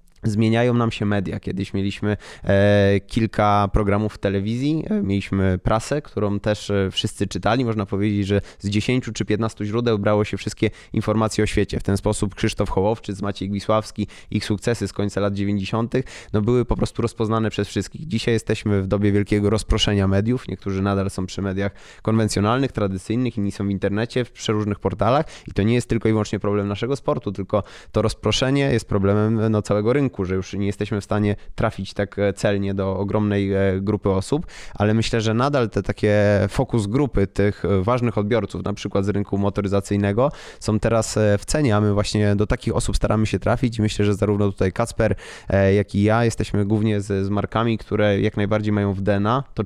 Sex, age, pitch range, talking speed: male, 20-39, 100-110 Hz, 180 wpm